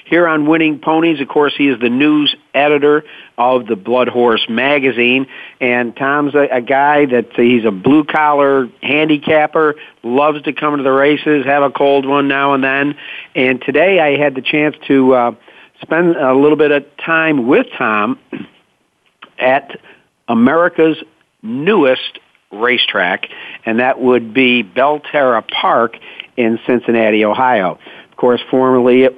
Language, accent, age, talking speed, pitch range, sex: English, American, 50-69, 150 wpm, 120-145 Hz, male